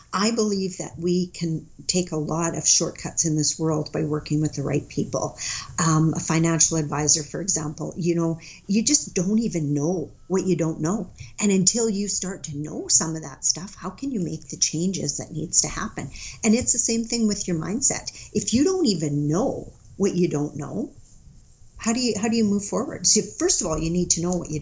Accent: American